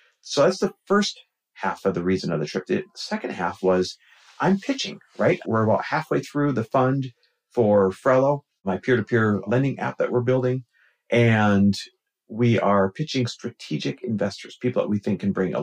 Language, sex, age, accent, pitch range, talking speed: English, male, 50-69, American, 105-150 Hz, 175 wpm